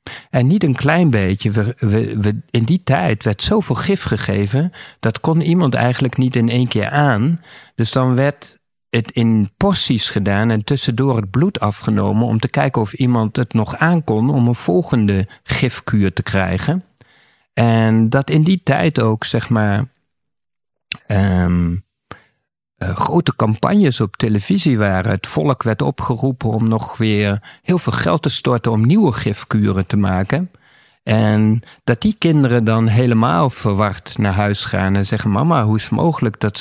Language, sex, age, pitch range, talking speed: Dutch, male, 50-69, 105-130 Hz, 155 wpm